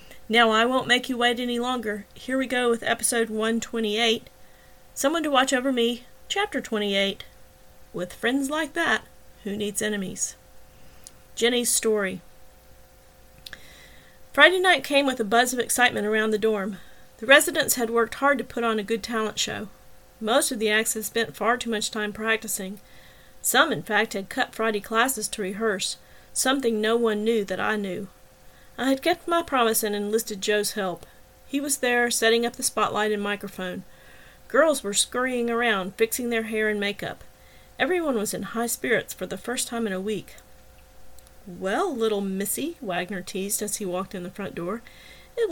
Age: 40-59